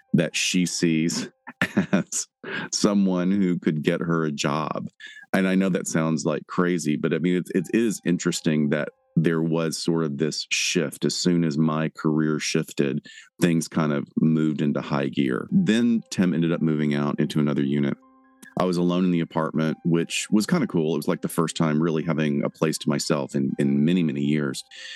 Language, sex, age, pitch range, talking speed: English, male, 40-59, 75-85 Hz, 195 wpm